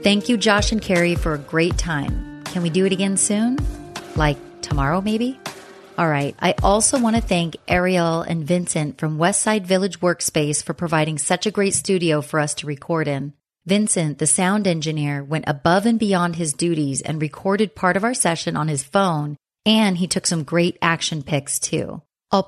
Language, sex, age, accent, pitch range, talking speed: English, female, 30-49, American, 155-195 Hz, 190 wpm